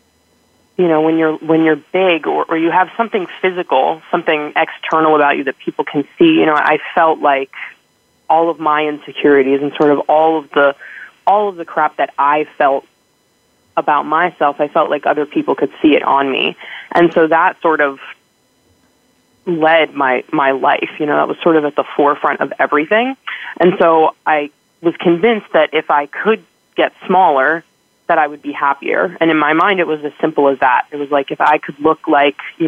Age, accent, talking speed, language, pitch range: 20-39, American, 200 wpm, English, 145-170 Hz